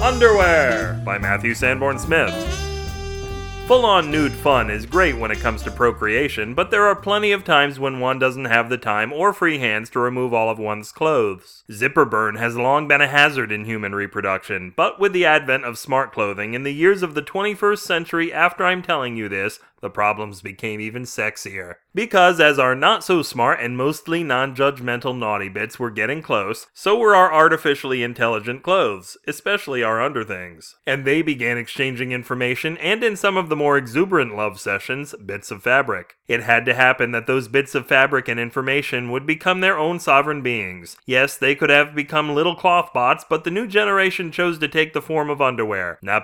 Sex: male